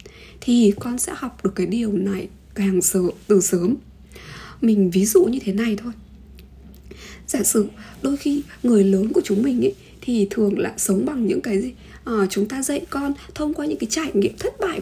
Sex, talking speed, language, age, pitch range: female, 195 wpm, Vietnamese, 20-39, 195-275 Hz